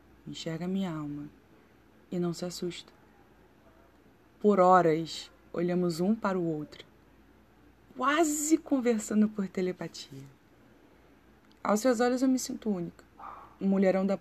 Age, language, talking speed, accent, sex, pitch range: 20-39, Portuguese, 120 wpm, Brazilian, female, 165-215 Hz